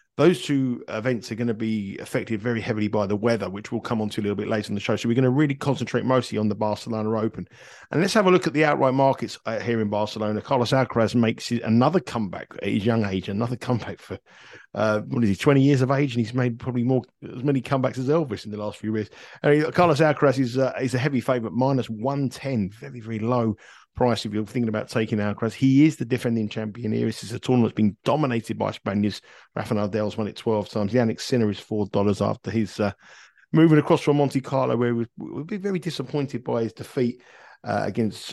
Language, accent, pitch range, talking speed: English, British, 110-130 Hz, 230 wpm